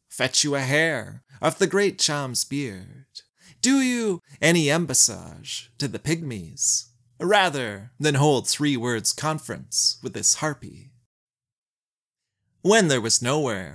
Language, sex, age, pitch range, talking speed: English, male, 30-49, 120-160 Hz, 125 wpm